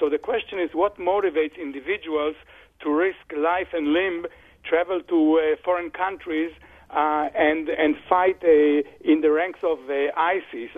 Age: 50-69